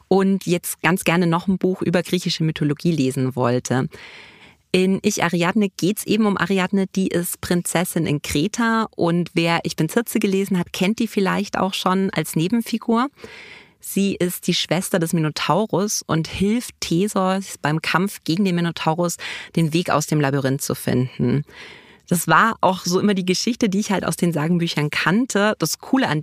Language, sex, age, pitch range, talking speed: German, female, 30-49, 165-200 Hz, 175 wpm